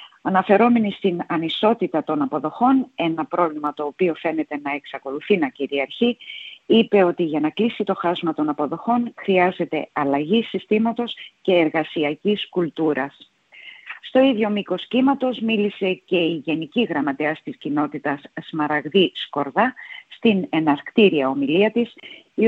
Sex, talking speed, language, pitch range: female, 125 wpm, Greek, 150-210 Hz